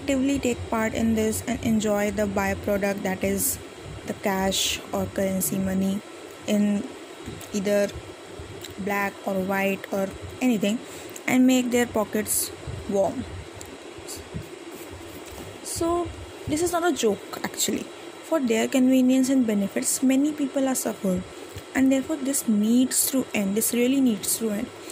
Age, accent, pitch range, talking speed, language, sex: 20-39, Indian, 210-285 Hz, 130 wpm, English, female